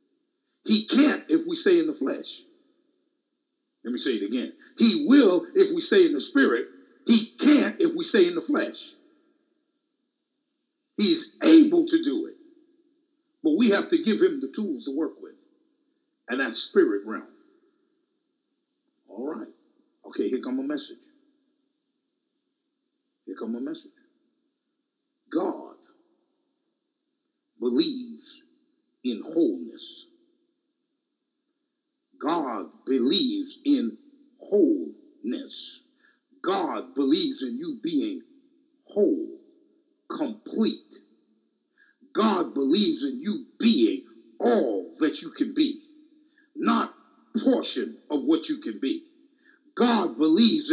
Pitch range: 290-330 Hz